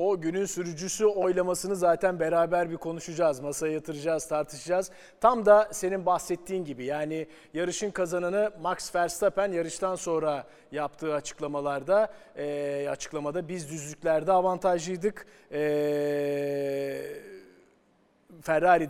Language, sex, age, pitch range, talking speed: Turkish, male, 40-59, 160-210 Hz, 100 wpm